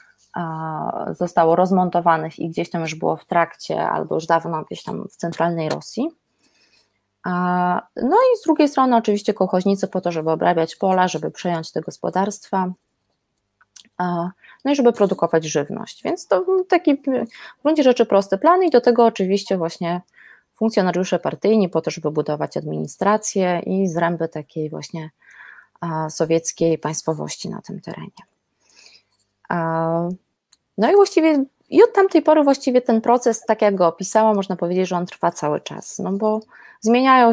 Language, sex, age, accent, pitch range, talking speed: Polish, female, 20-39, native, 170-235 Hz, 145 wpm